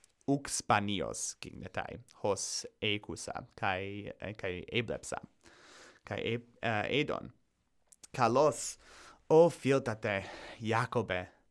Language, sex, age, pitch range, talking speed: Greek, male, 30-49, 105-150 Hz, 85 wpm